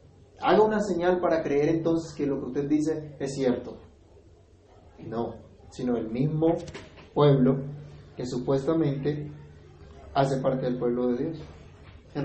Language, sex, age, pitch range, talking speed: Spanish, male, 30-49, 125-175 Hz, 130 wpm